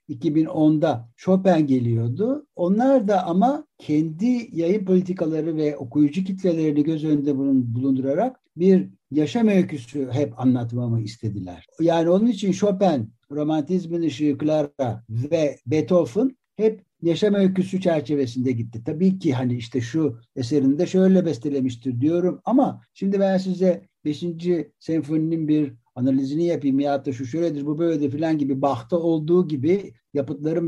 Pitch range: 135-175 Hz